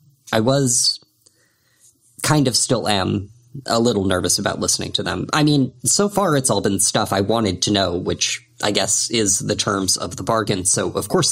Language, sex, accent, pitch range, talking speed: English, male, American, 105-130 Hz, 195 wpm